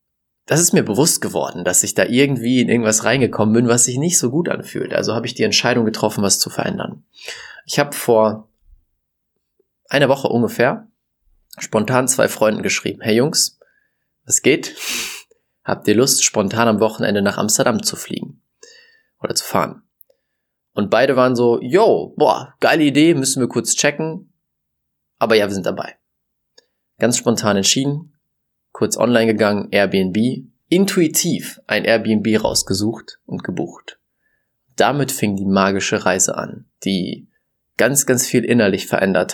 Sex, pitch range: male, 100-140 Hz